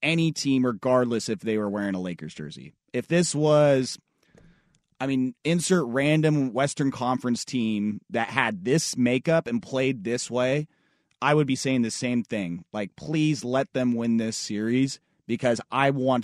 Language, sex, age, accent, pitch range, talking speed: English, male, 30-49, American, 115-155 Hz, 165 wpm